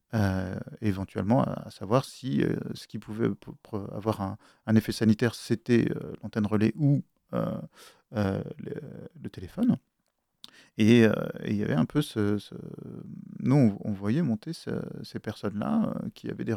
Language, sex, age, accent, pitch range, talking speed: French, male, 40-59, French, 105-130 Hz, 175 wpm